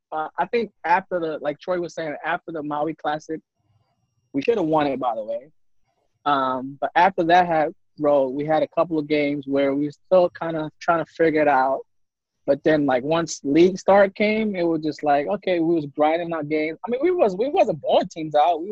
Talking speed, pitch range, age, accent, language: 235 wpm, 145-175 Hz, 20-39, American, English